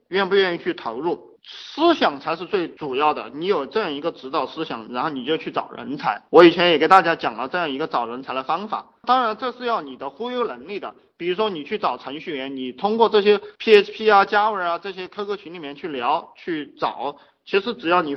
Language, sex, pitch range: Chinese, male, 155-225 Hz